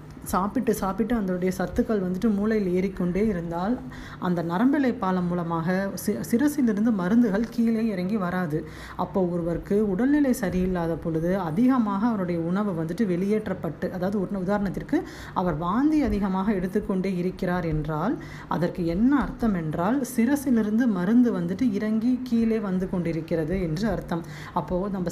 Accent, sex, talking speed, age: native, female, 120 wpm, 20-39